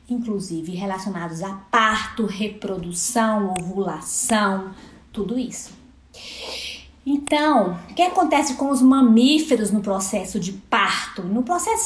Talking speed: 110 wpm